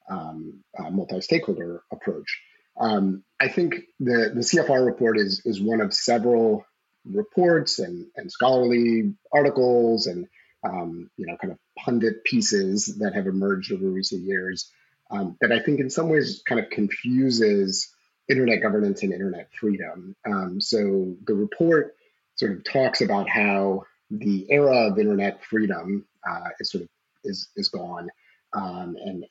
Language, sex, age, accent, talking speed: English, male, 30-49, American, 150 wpm